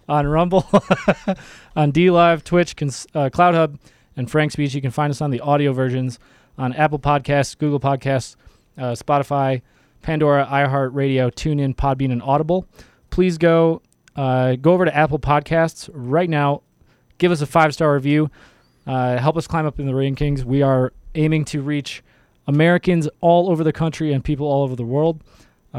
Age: 20-39